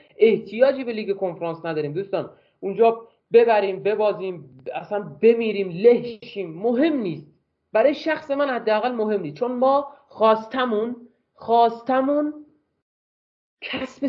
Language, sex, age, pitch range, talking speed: Persian, male, 30-49, 195-255 Hz, 105 wpm